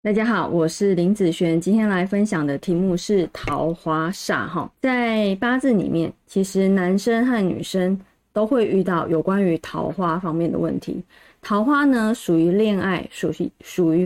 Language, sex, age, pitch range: Chinese, female, 20-39, 185-245 Hz